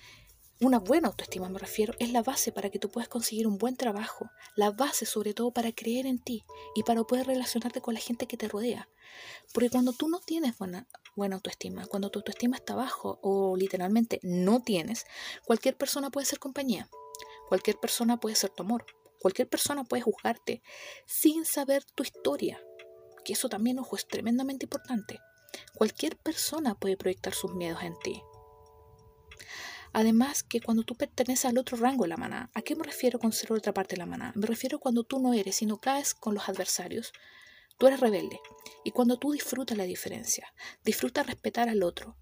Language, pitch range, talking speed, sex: Spanish, 200-255 Hz, 185 wpm, female